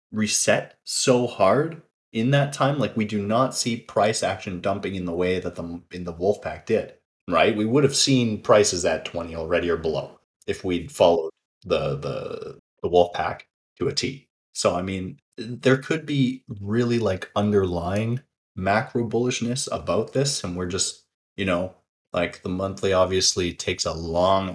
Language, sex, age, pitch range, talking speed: English, male, 30-49, 85-115 Hz, 175 wpm